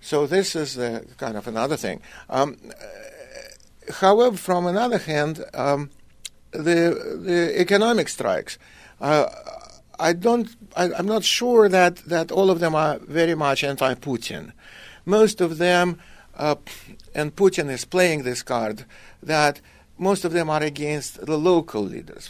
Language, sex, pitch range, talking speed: English, male, 120-175 Hz, 145 wpm